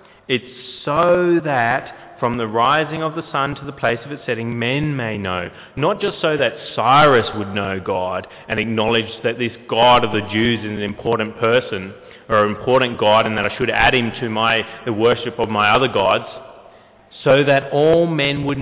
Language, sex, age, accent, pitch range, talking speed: English, male, 30-49, Australian, 115-145 Hz, 195 wpm